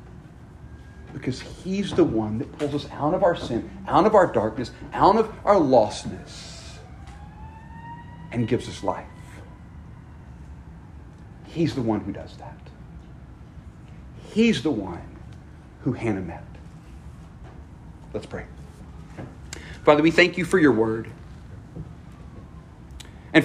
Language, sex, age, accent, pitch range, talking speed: English, male, 40-59, American, 105-155 Hz, 115 wpm